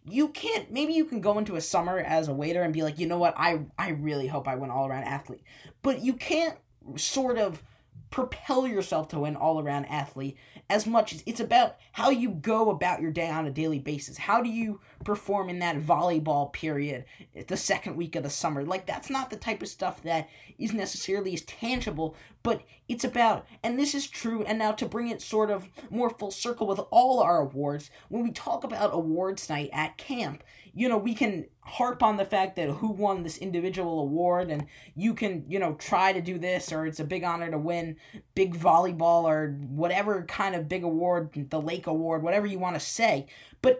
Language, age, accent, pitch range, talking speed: English, 20-39, American, 155-220 Hz, 210 wpm